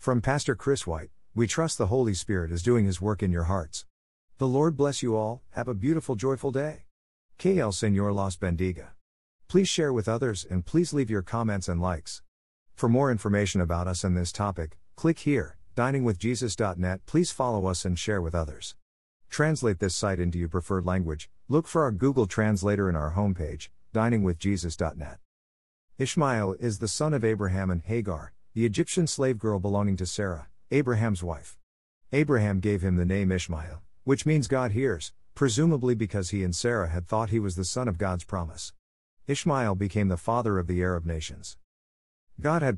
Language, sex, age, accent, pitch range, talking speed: English, male, 50-69, American, 90-120 Hz, 180 wpm